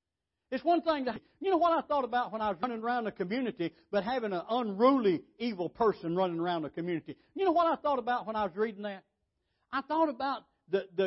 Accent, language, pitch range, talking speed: American, English, 175-265 Hz, 230 wpm